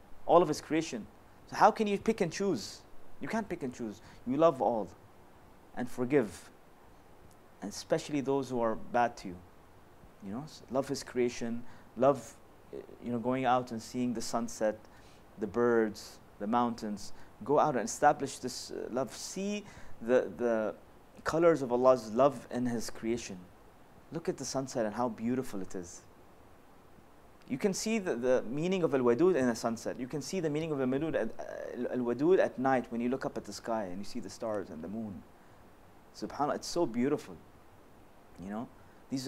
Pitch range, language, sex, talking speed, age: 105-135 Hz, English, male, 180 wpm, 30-49